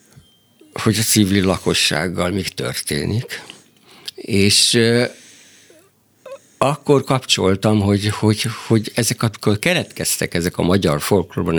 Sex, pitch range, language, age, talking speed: male, 95-125 Hz, Hungarian, 60-79, 110 wpm